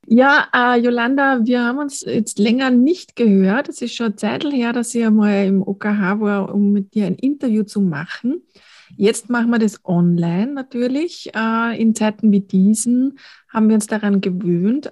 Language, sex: German, female